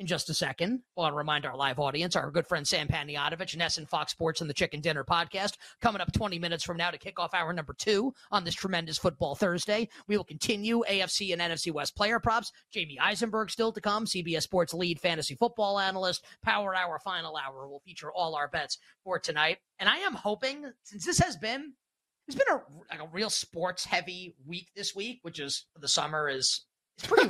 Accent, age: American, 30-49